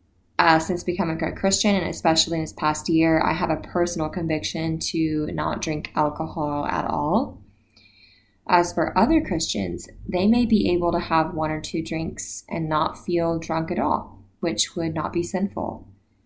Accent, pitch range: American, 155-185 Hz